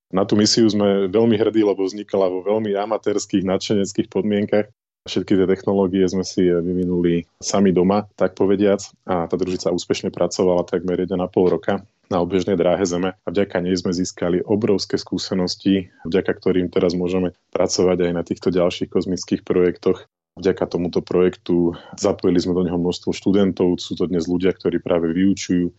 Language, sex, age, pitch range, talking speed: Slovak, male, 20-39, 85-100 Hz, 160 wpm